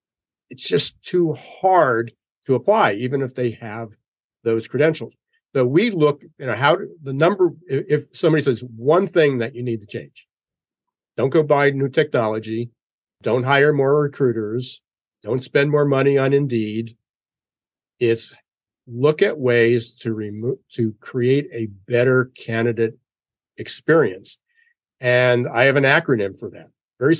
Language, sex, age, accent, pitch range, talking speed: English, male, 60-79, American, 115-145 Hz, 150 wpm